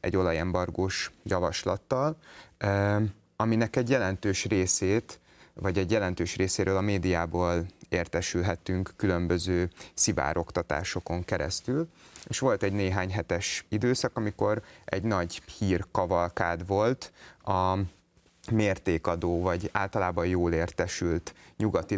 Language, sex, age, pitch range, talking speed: Hungarian, male, 30-49, 85-100 Hz, 100 wpm